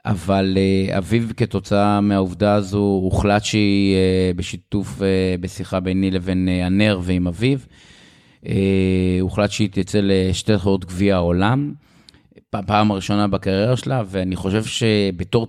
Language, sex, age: Hebrew, male, 30-49